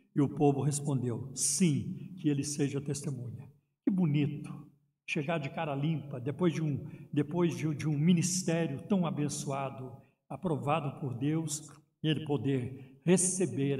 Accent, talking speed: Brazilian, 125 wpm